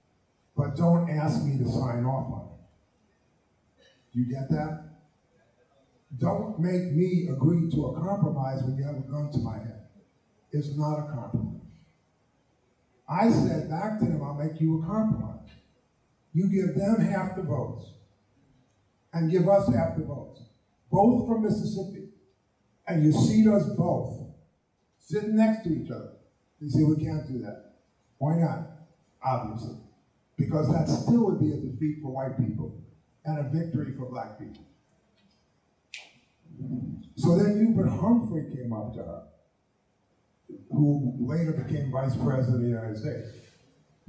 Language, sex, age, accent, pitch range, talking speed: English, male, 50-69, American, 115-160 Hz, 145 wpm